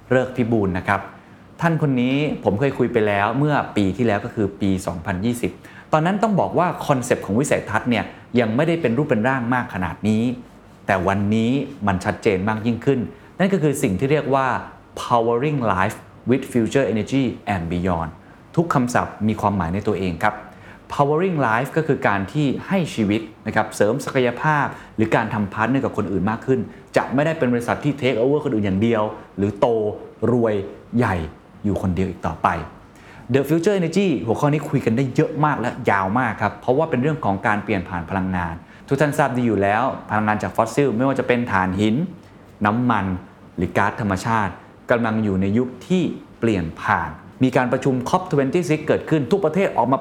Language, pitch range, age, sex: Thai, 100-140 Hz, 20-39, male